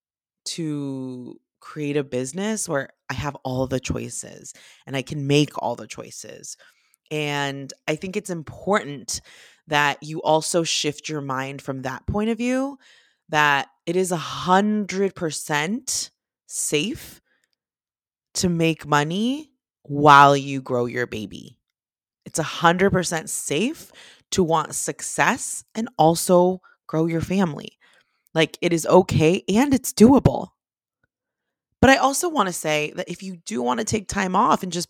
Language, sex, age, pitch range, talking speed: English, female, 20-39, 150-200 Hz, 145 wpm